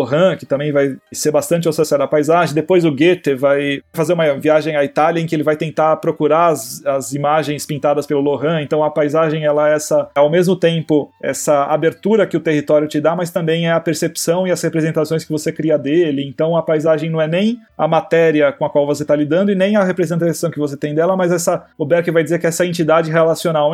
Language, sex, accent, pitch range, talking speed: Portuguese, male, Brazilian, 150-185 Hz, 230 wpm